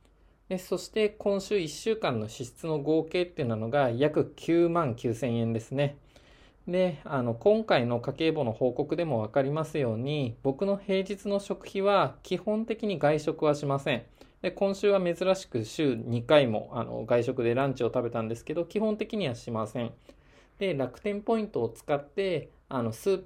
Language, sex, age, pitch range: Japanese, male, 20-39, 120-185 Hz